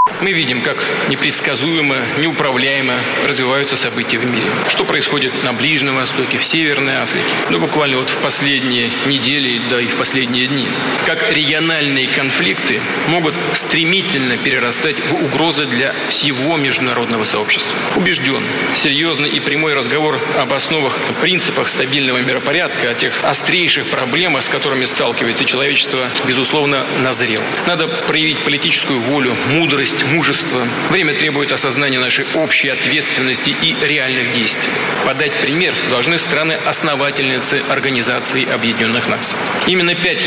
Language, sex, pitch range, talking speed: Russian, male, 135-155 Hz, 125 wpm